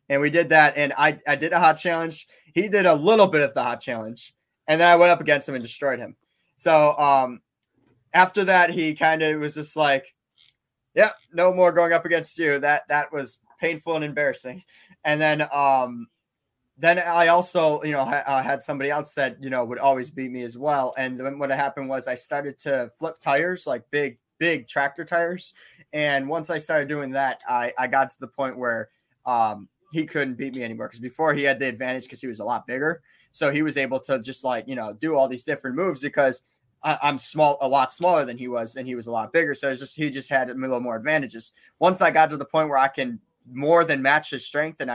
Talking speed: 235 wpm